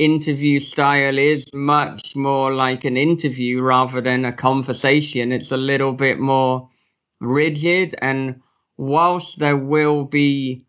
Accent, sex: British, male